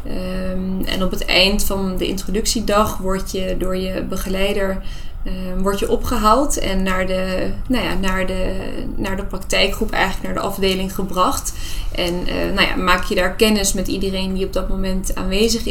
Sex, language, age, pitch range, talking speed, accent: female, Dutch, 20-39, 185-200 Hz, 175 wpm, Dutch